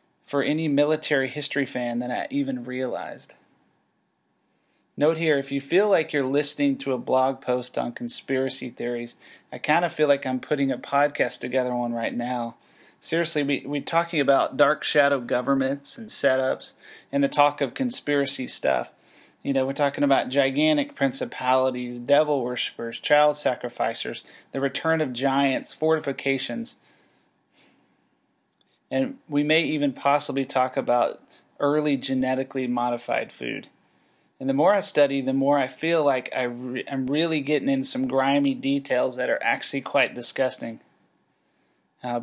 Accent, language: American, English